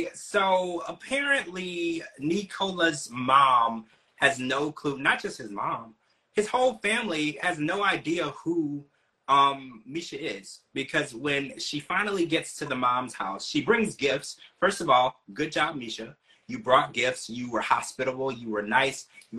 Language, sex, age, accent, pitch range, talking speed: English, male, 30-49, American, 130-175 Hz, 150 wpm